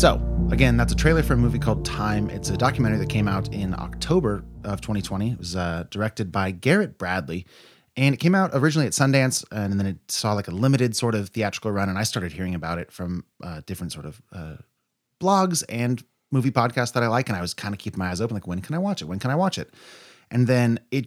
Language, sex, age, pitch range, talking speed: English, male, 30-49, 95-130 Hz, 250 wpm